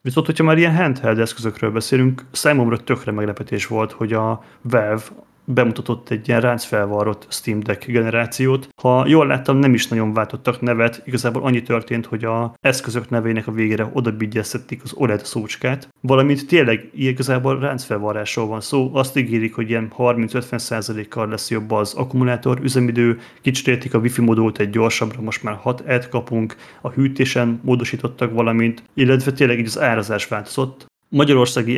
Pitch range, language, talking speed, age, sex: 110-130 Hz, Hungarian, 155 wpm, 30-49, male